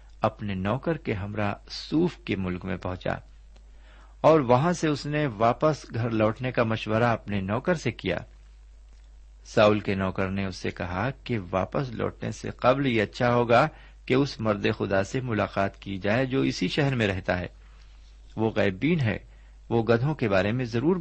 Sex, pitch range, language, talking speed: male, 90-120 Hz, Urdu, 170 wpm